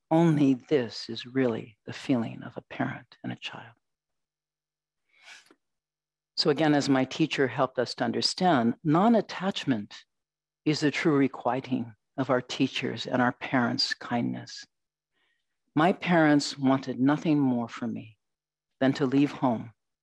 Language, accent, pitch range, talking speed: English, American, 125-155 Hz, 130 wpm